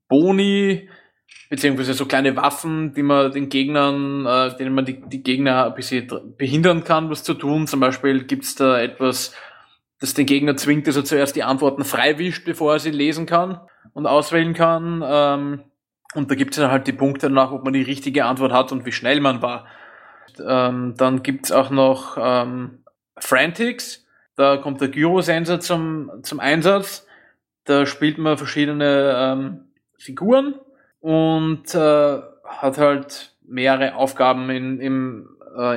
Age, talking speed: 20-39, 165 wpm